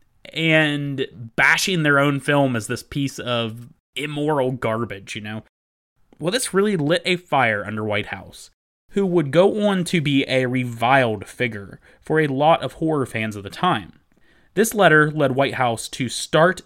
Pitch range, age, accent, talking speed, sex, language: 115-165 Hz, 30-49, American, 170 wpm, male, English